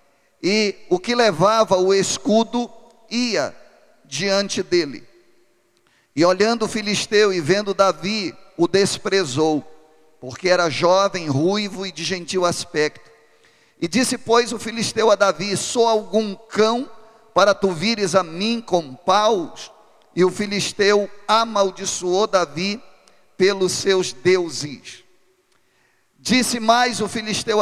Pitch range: 180-225 Hz